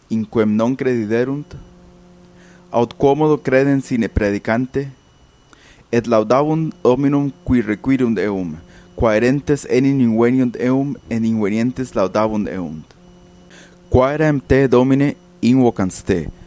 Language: Italian